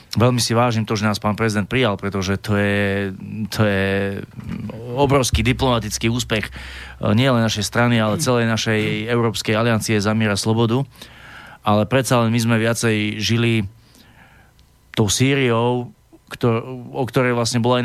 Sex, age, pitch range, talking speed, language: male, 20-39, 110-125 Hz, 150 wpm, Slovak